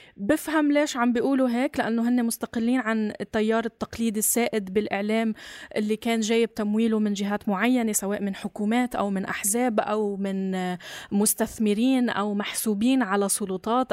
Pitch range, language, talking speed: 210-255 Hz, Arabic, 140 wpm